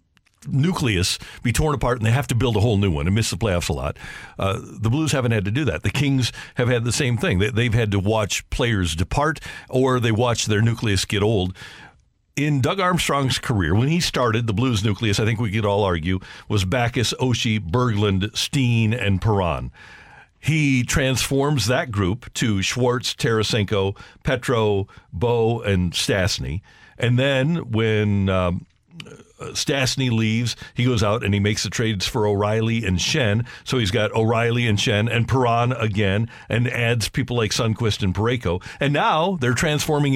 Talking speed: 180 wpm